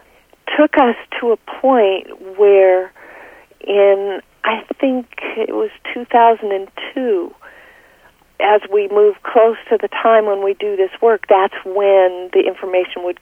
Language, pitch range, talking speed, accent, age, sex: English, 170-220 Hz, 130 wpm, American, 50-69, female